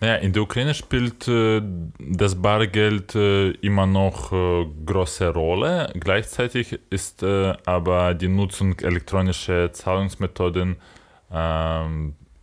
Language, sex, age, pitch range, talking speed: German, male, 20-39, 80-95 Hz, 110 wpm